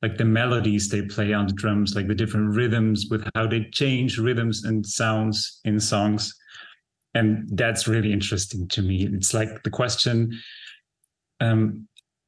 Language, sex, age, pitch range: English, male, 30-49, 105-120 Hz